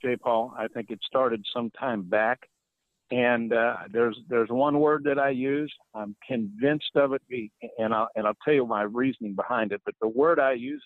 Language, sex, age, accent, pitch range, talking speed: English, male, 60-79, American, 115-150 Hz, 205 wpm